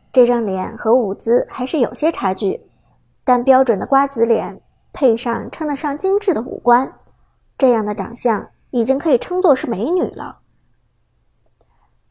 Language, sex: Chinese, male